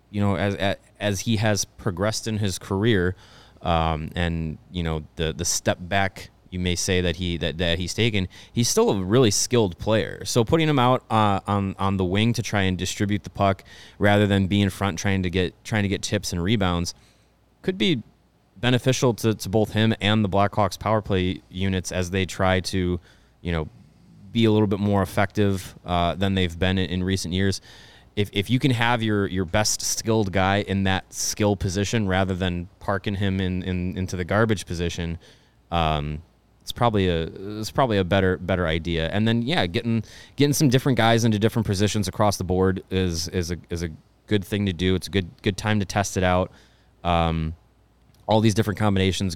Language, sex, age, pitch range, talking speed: English, male, 20-39, 90-105 Hz, 200 wpm